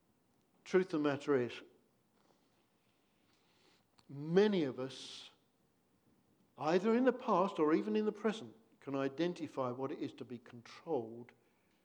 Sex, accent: male, British